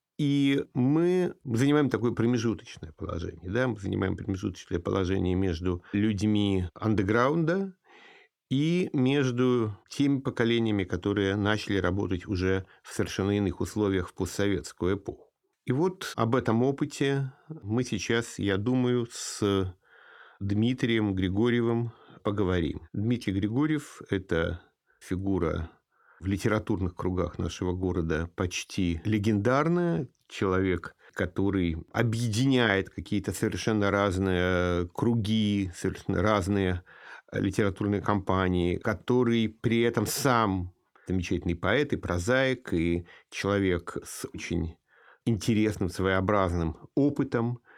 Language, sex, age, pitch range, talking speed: Russian, male, 50-69, 95-125 Hz, 100 wpm